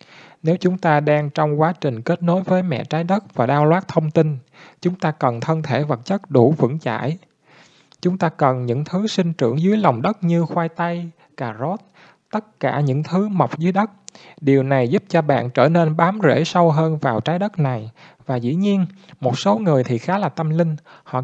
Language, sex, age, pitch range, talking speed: Vietnamese, male, 20-39, 130-170 Hz, 220 wpm